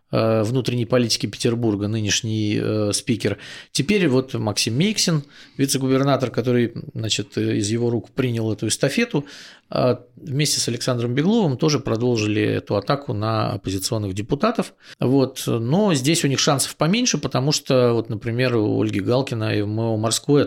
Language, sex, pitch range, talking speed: Russian, male, 115-140 Hz, 140 wpm